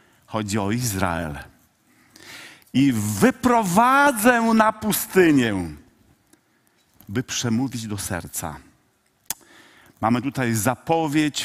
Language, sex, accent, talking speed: Polish, male, native, 75 wpm